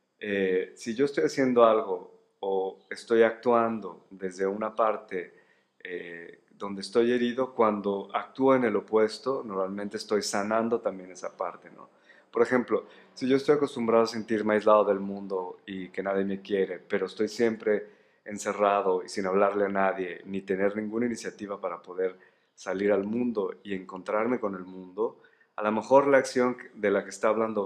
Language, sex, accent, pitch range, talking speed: Spanish, male, Mexican, 95-115 Hz, 165 wpm